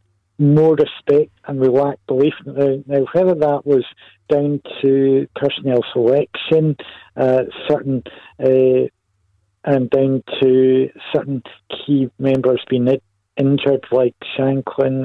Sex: male